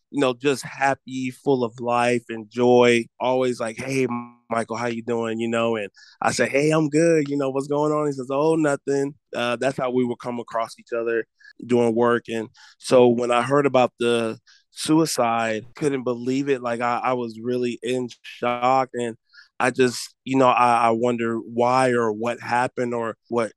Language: English